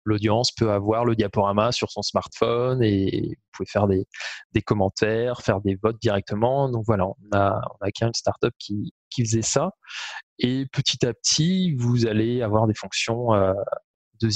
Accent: French